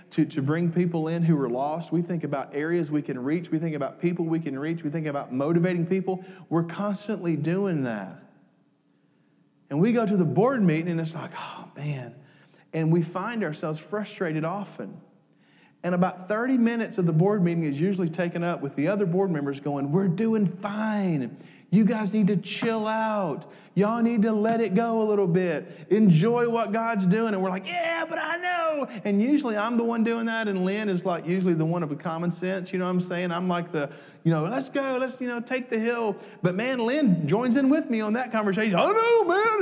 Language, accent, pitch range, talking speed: English, American, 170-220 Hz, 220 wpm